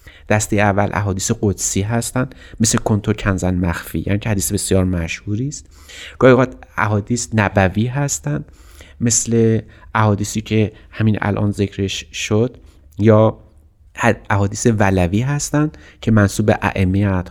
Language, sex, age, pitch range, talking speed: Persian, male, 30-49, 95-120 Hz, 120 wpm